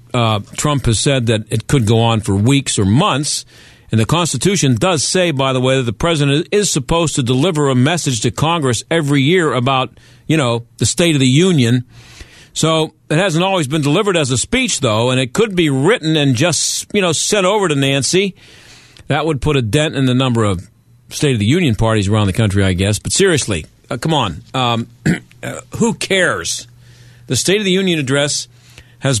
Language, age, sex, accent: English, 50-69, male, American